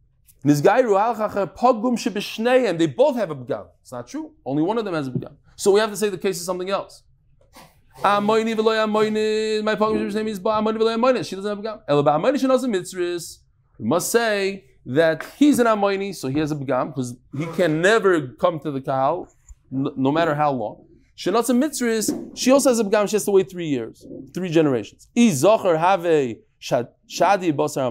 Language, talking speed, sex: English, 150 wpm, male